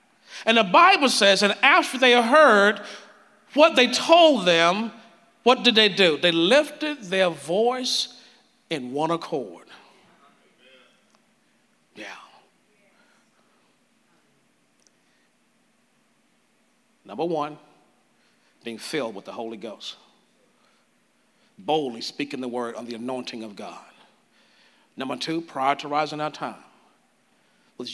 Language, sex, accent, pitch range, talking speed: English, male, American, 155-235 Hz, 105 wpm